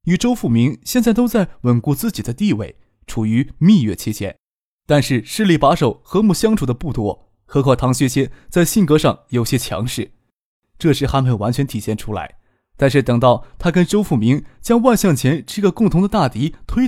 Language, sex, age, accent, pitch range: Chinese, male, 20-39, native, 115-150 Hz